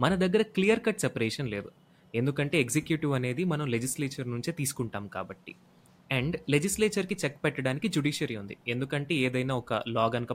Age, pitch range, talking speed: 20-39, 120-180 Hz, 145 wpm